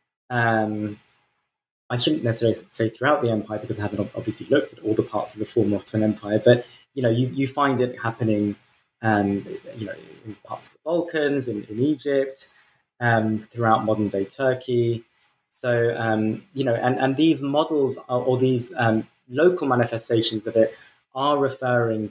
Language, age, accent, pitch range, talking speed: English, 20-39, British, 110-140 Hz, 175 wpm